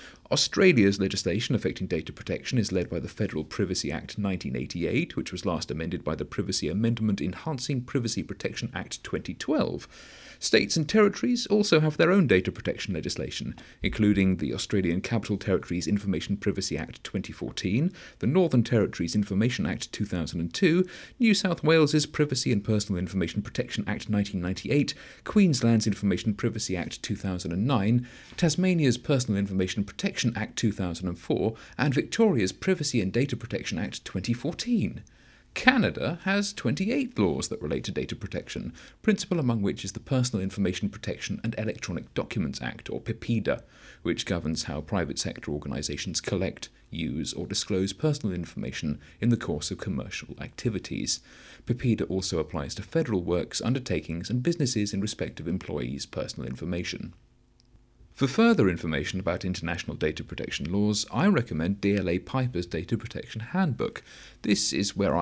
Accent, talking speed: British, 140 wpm